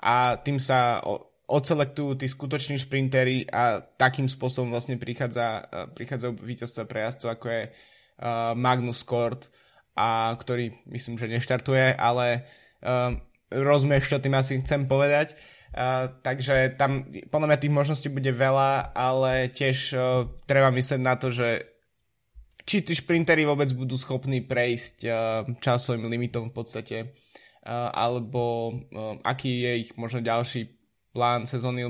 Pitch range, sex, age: 120-135 Hz, male, 20-39